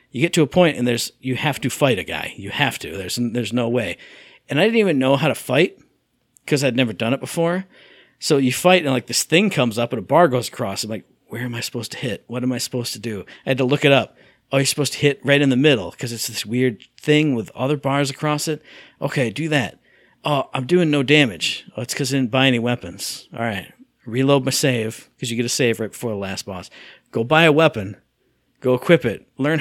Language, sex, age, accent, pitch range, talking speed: English, male, 50-69, American, 120-160 Hz, 255 wpm